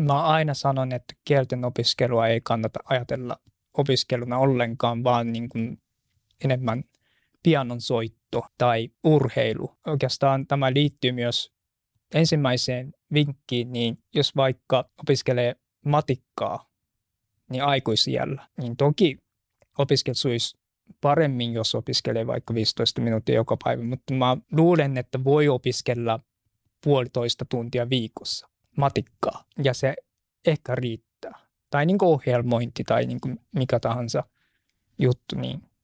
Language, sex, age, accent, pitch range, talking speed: Finnish, male, 20-39, native, 120-140 Hz, 110 wpm